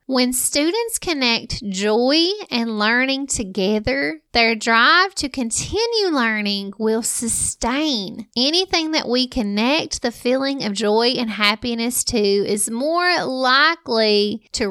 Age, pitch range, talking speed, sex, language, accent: 30-49, 210-270 Hz, 120 wpm, female, English, American